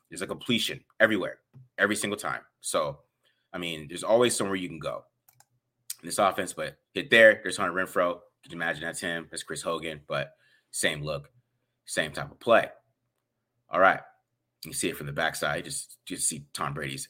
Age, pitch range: 30-49, 95-125 Hz